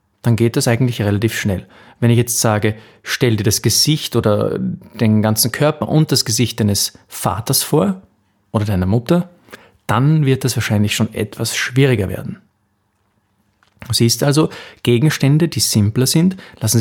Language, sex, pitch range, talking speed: German, male, 105-130 Hz, 150 wpm